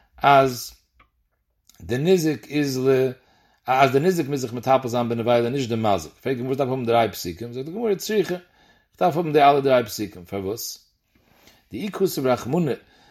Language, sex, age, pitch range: English, male, 40-59, 115-175 Hz